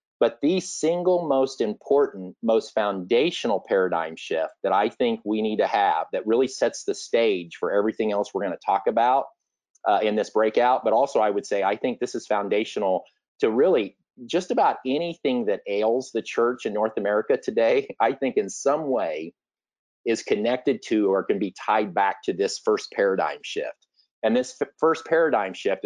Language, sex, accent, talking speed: English, male, American, 185 wpm